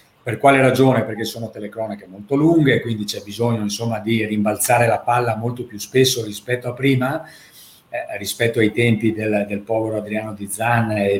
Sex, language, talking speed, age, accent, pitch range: male, Italian, 175 wpm, 50-69, native, 110-130 Hz